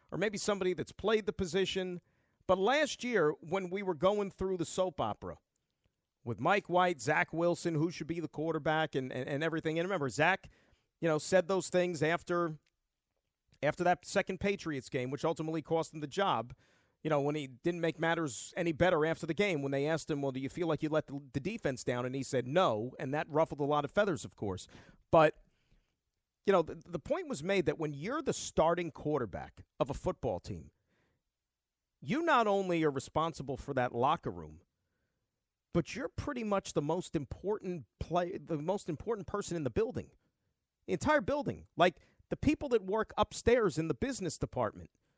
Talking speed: 195 wpm